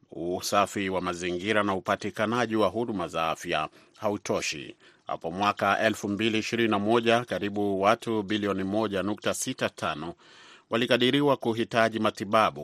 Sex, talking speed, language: male, 95 wpm, Swahili